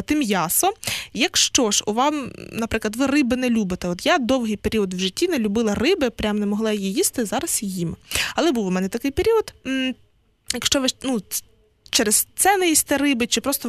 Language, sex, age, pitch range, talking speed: Ukrainian, female, 20-39, 210-265 Hz, 185 wpm